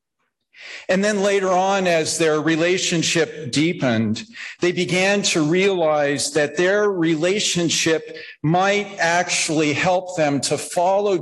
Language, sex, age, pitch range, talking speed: English, male, 50-69, 140-185 Hz, 110 wpm